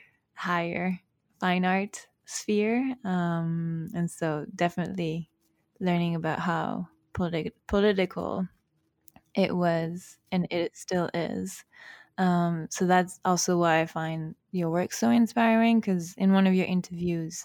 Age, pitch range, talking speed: 20-39, 165-195 Hz, 125 wpm